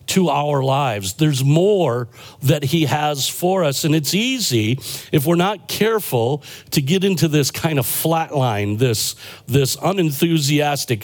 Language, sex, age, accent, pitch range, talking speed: English, male, 50-69, American, 135-175 Hz, 145 wpm